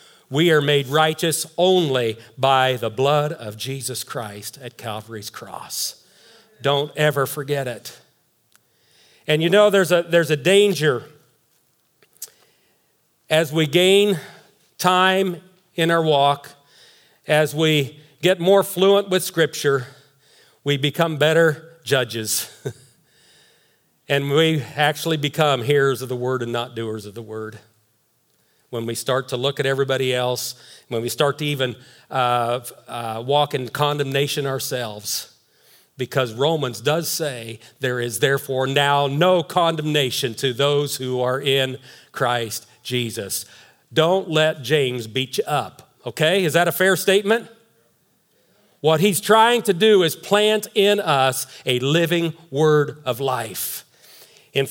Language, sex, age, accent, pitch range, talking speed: English, male, 40-59, American, 125-165 Hz, 135 wpm